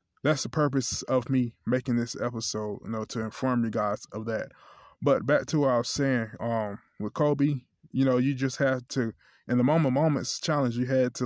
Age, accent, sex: 20-39, American, male